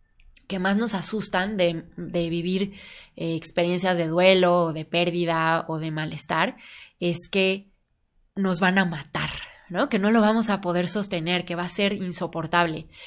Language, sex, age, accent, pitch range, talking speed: Spanish, female, 20-39, Mexican, 170-210 Hz, 165 wpm